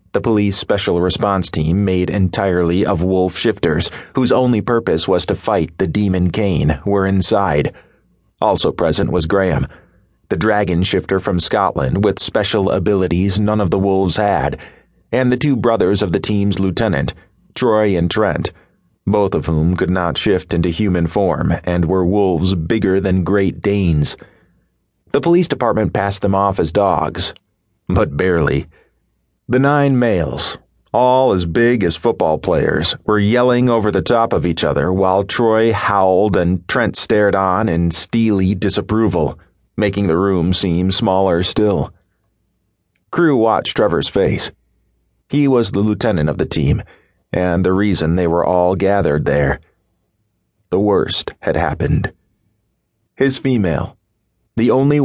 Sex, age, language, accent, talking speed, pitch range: male, 30-49, English, American, 145 wpm, 90-110 Hz